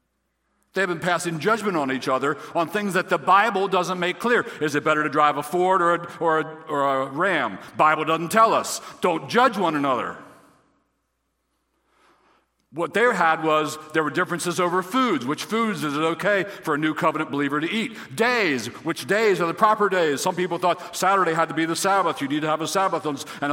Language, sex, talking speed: English, male, 205 wpm